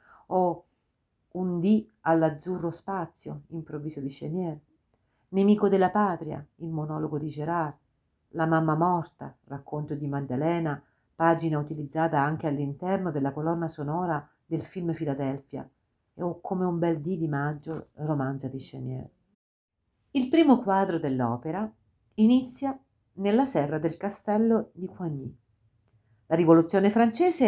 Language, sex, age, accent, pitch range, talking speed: Italian, female, 50-69, native, 145-195 Hz, 125 wpm